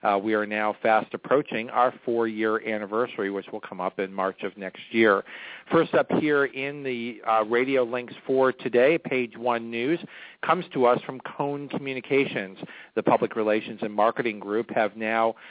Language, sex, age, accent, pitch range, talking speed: English, male, 40-59, American, 110-125 Hz, 175 wpm